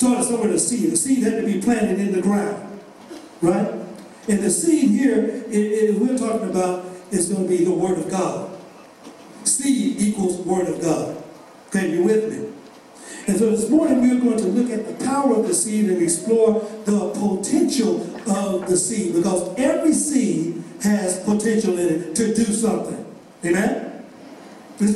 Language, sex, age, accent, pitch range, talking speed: English, male, 60-79, American, 195-255 Hz, 175 wpm